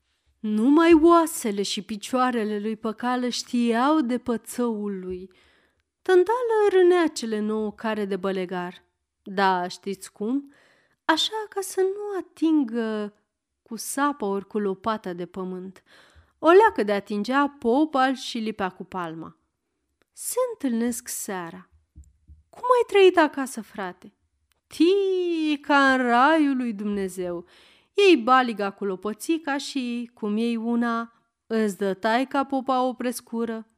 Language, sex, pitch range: Romanian, female, 205-300 Hz